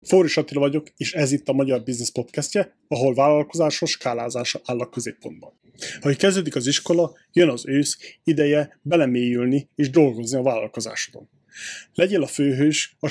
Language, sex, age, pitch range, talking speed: Hungarian, male, 30-49, 130-160 Hz, 150 wpm